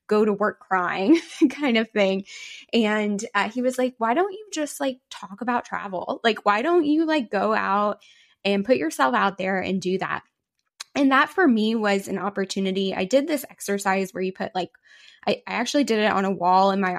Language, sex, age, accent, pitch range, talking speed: English, female, 10-29, American, 190-245 Hz, 210 wpm